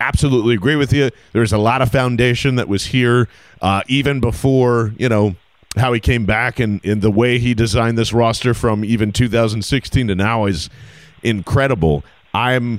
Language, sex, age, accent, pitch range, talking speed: English, male, 40-59, American, 110-140 Hz, 175 wpm